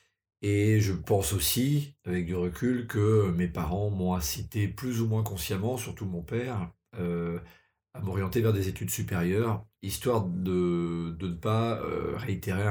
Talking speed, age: 155 wpm, 50-69